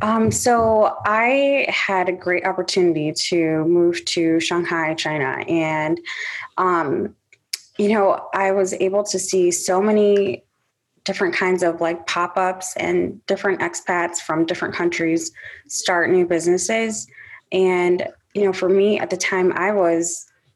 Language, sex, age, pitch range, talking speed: English, female, 20-39, 175-200 Hz, 140 wpm